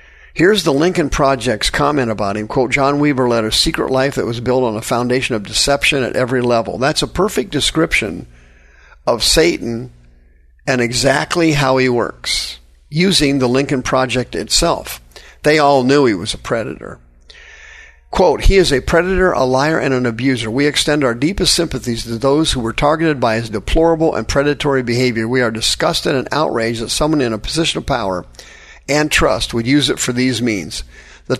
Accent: American